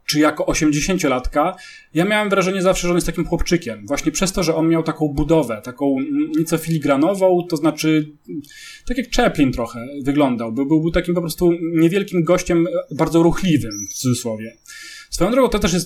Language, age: English, 30-49